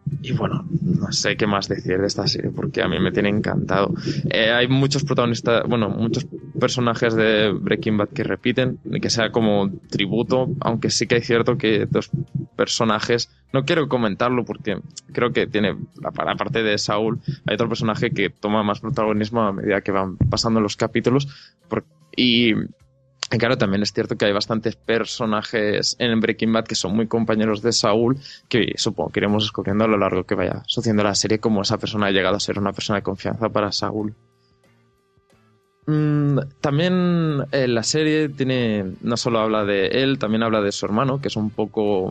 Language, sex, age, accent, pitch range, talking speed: Spanish, male, 20-39, Spanish, 105-130 Hz, 185 wpm